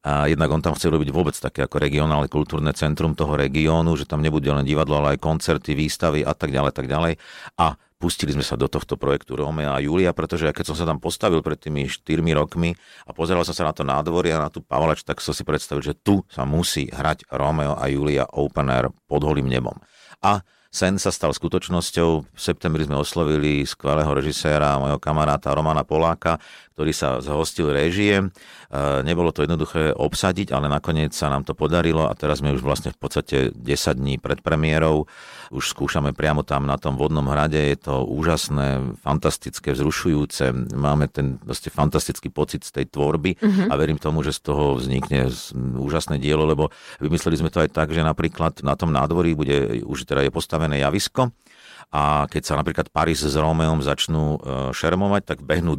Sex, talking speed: male, 185 wpm